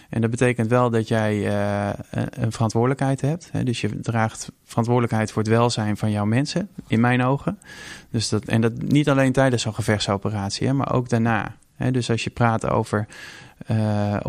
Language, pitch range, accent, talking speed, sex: Dutch, 105-120 Hz, Dutch, 165 wpm, male